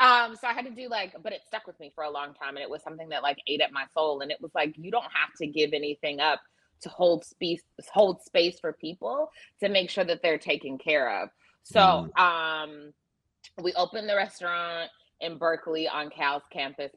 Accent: American